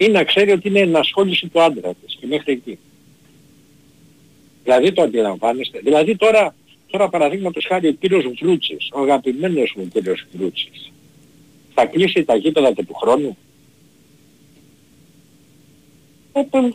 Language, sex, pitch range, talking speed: Greek, male, 145-215 Hz, 125 wpm